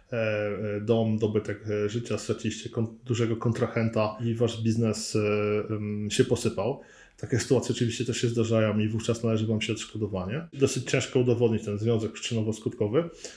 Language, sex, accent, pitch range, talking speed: Polish, male, native, 110-130 Hz, 130 wpm